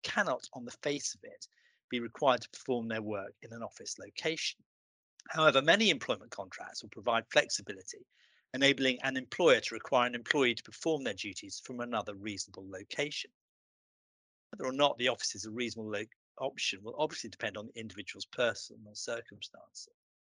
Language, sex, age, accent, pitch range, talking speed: English, male, 40-59, British, 105-145 Hz, 165 wpm